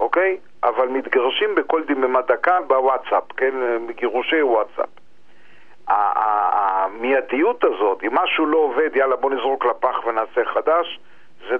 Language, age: Hebrew, 50-69